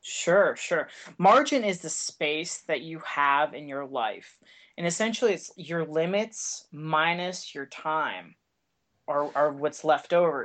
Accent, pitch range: American, 150-185 Hz